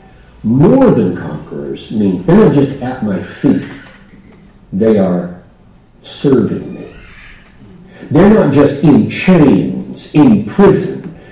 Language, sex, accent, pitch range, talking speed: English, male, American, 125-175 Hz, 110 wpm